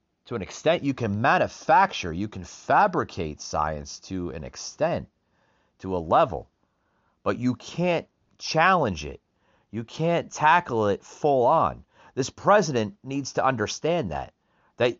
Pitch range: 100-140 Hz